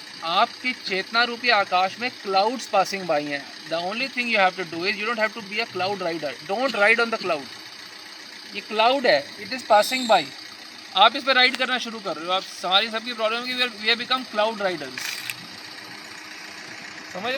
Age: 20-39